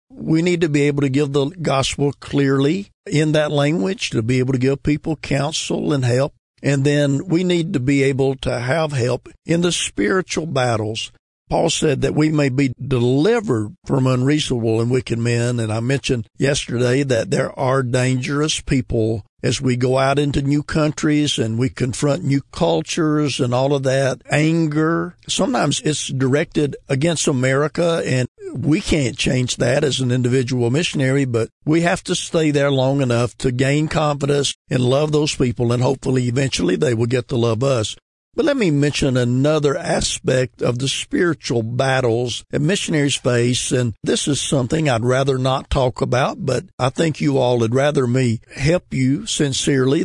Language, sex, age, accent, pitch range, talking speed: English, male, 50-69, American, 125-150 Hz, 175 wpm